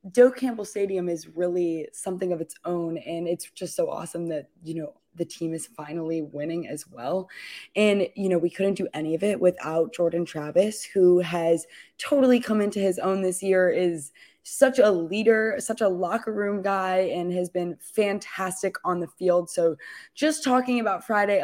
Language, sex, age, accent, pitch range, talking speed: English, female, 20-39, American, 175-215 Hz, 185 wpm